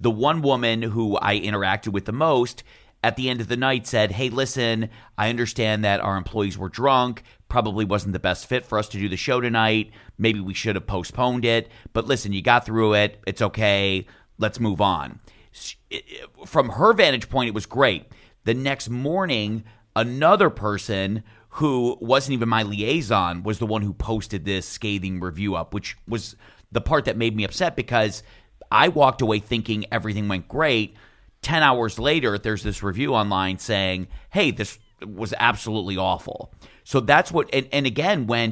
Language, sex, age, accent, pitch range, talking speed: English, male, 40-59, American, 100-120 Hz, 180 wpm